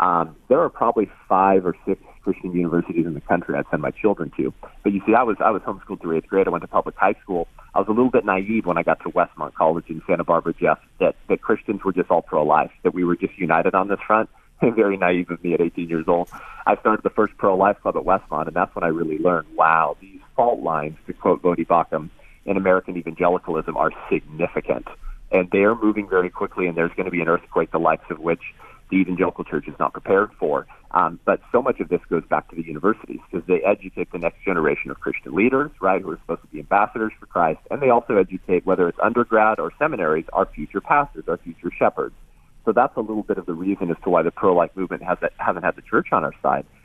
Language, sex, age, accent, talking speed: English, male, 40-59, American, 245 wpm